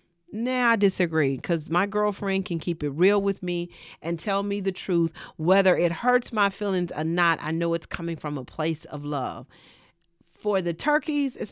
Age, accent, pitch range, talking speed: 40-59, American, 160-205 Hz, 195 wpm